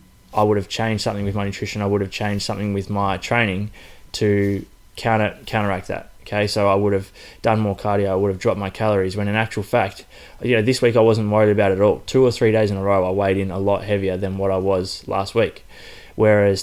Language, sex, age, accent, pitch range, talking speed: English, male, 20-39, Australian, 100-110 Hz, 250 wpm